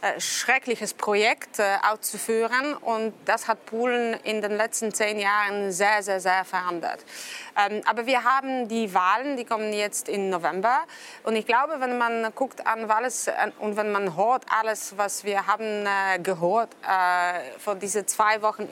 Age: 30-49